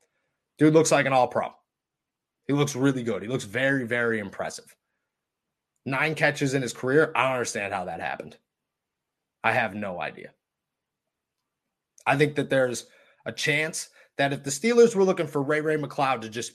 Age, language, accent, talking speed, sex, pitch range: 30-49, English, American, 170 wpm, male, 120-155 Hz